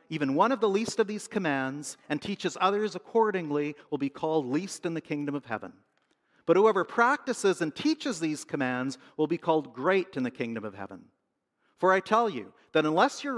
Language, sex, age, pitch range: English, male, 50-69, 145-190 Hz